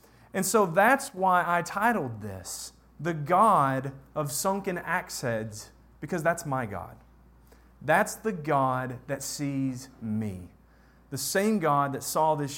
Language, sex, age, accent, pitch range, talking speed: English, male, 40-59, American, 140-220 Hz, 140 wpm